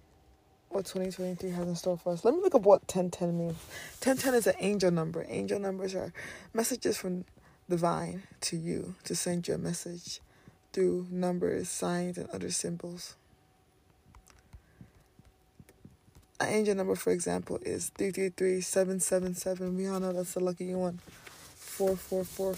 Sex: female